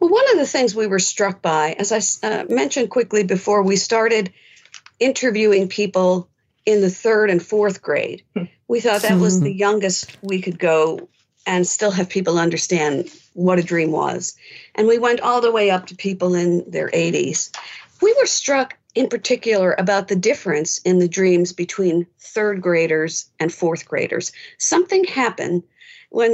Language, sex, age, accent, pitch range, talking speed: English, female, 50-69, American, 175-225 Hz, 170 wpm